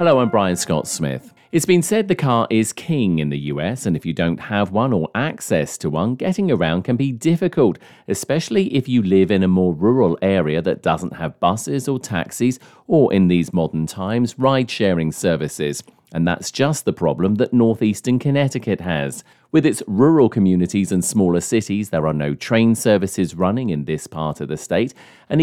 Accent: British